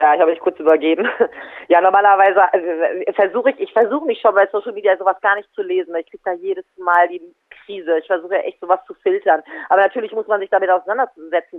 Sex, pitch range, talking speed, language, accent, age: female, 170-260 Hz, 230 wpm, German, German, 30-49